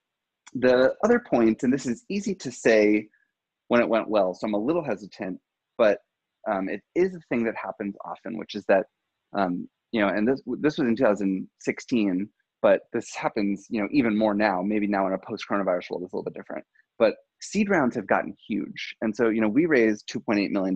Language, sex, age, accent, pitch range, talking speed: English, male, 20-39, American, 100-125 Hz, 210 wpm